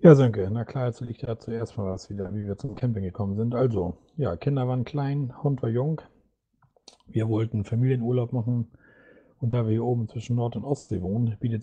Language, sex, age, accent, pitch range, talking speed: German, male, 40-59, German, 110-130 Hz, 210 wpm